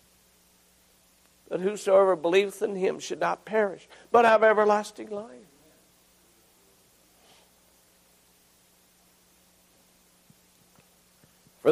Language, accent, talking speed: English, American, 65 wpm